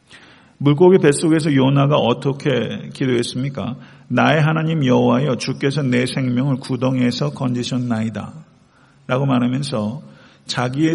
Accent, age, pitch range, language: native, 50-69, 125-155 Hz, Korean